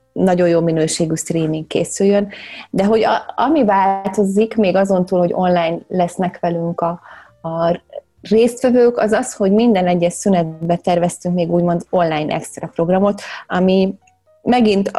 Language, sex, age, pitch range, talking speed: Hungarian, female, 30-49, 170-200 Hz, 135 wpm